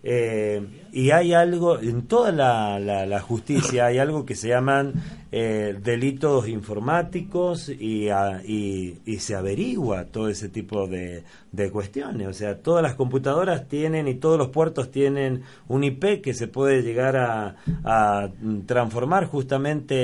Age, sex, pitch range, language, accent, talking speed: 40-59, male, 110-155 Hz, Spanish, Argentinian, 155 wpm